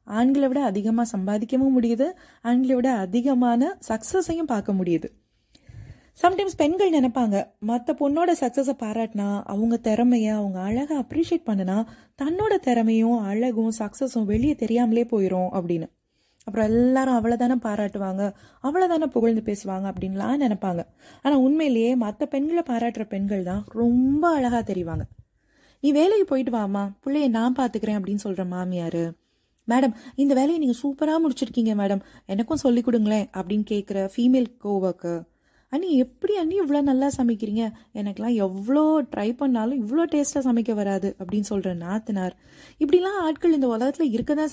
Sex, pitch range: female, 210-275 Hz